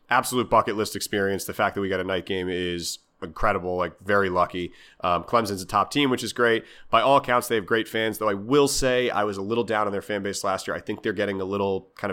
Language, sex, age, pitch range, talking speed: English, male, 30-49, 90-110 Hz, 265 wpm